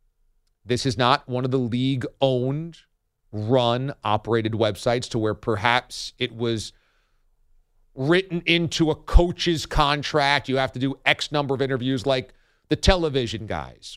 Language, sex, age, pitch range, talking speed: English, male, 40-59, 110-150 Hz, 135 wpm